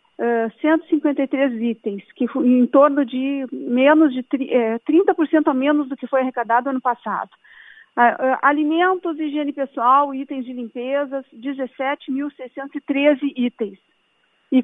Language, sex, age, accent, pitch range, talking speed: Portuguese, female, 50-69, Brazilian, 255-310 Hz, 110 wpm